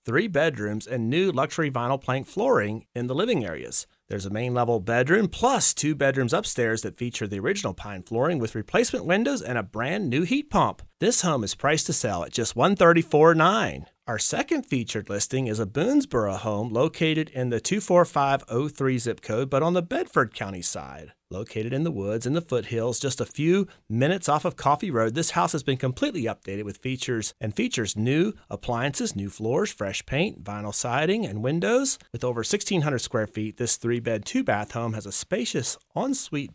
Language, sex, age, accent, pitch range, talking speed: English, male, 30-49, American, 110-165 Hz, 185 wpm